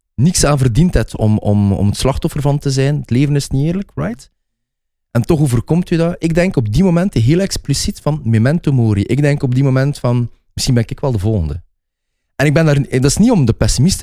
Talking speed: 240 wpm